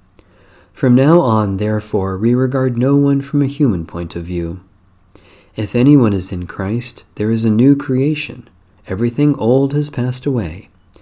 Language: English